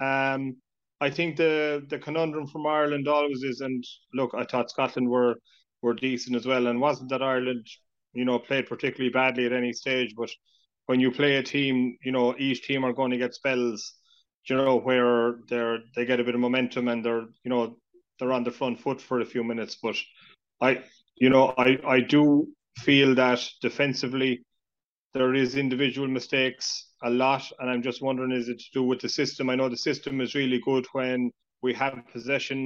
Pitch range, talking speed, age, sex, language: 125-135 Hz, 200 wpm, 30-49, male, English